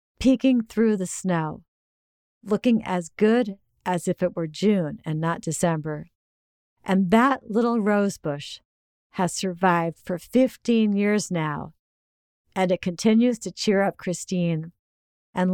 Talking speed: 125 wpm